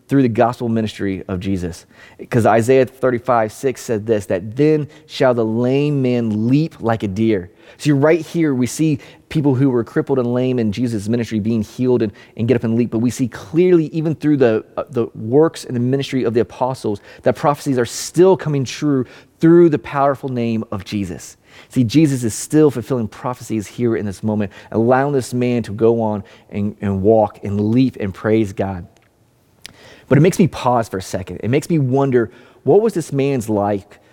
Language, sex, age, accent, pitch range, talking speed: English, male, 30-49, American, 110-135 Hz, 200 wpm